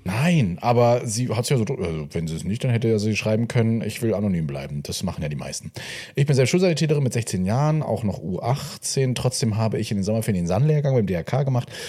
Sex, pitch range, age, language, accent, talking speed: male, 100-135 Hz, 30-49, German, German, 235 wpm